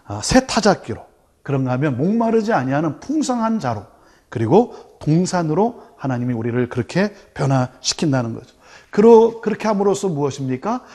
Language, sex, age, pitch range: Korean, male, 40-59, 135-220 Hz